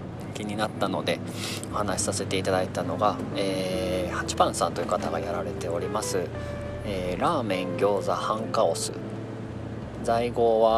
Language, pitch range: Japanese, 90-120 Hz